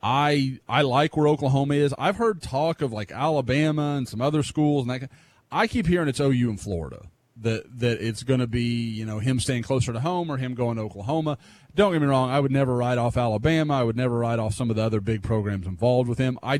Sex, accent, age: male, American, 30-49